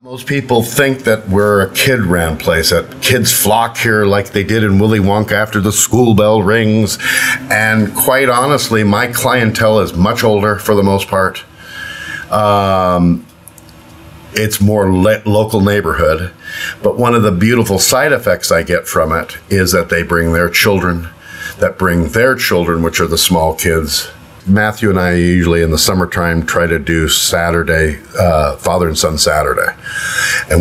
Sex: male